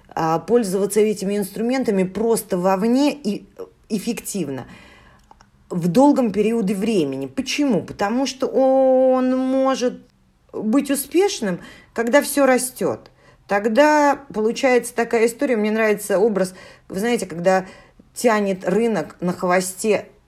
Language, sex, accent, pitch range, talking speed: Russian, female, native, 185-250 Hz, 105 wpm